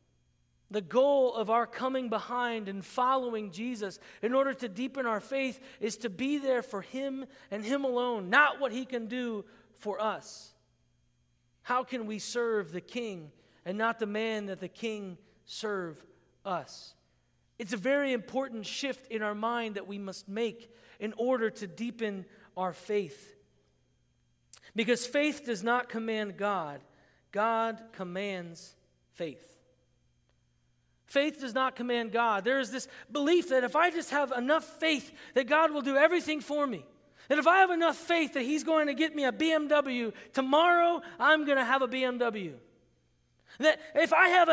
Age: 40-59